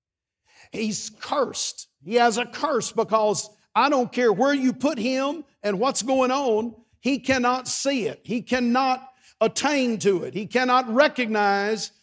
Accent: American